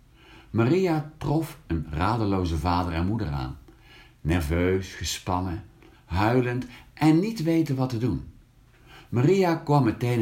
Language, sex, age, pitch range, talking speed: Dutch, male, 50-69, 85-125 Hz, 115 wpm